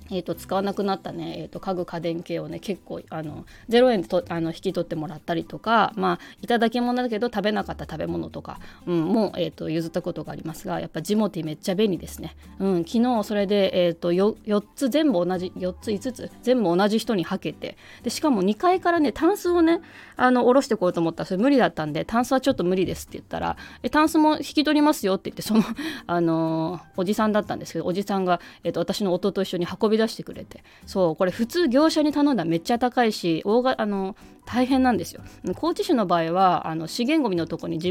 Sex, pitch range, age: female, 170-240 Hz, 20-39